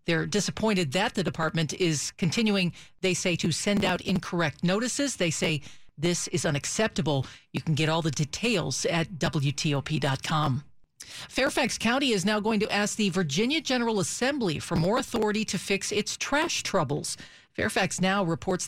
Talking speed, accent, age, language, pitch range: 155 wpm, American, 50-69, English, 165-210 Hz